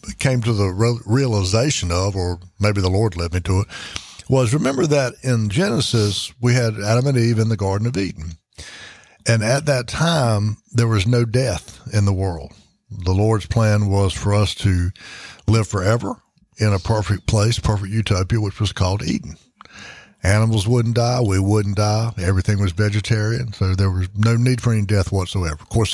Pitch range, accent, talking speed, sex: 95-120 Hz, American, 180 wpm, male